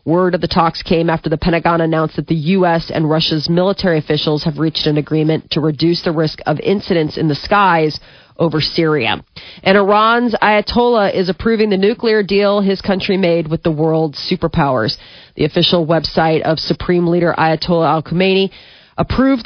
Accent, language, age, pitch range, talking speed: American, English, 40-59, 155-190 Hz, 175 wpm